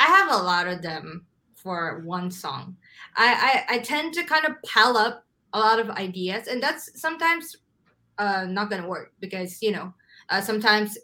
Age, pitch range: 20-39, 185-245 Hz